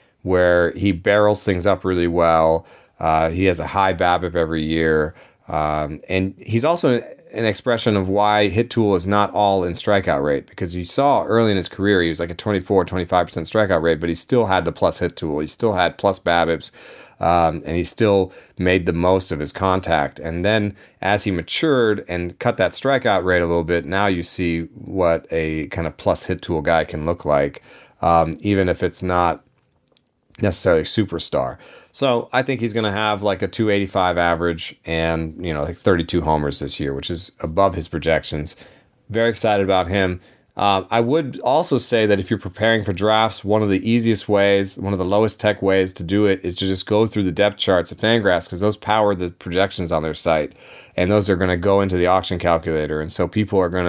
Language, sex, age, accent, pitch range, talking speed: English, male, 30-49, American, 85-100 Hz, 210 wpm